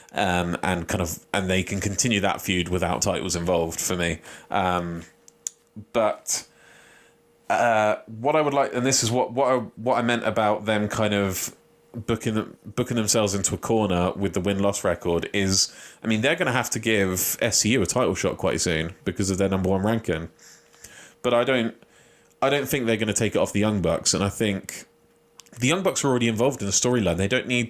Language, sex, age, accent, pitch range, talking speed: English, male, 30-49, British, 95-115 Hz, 205 wpm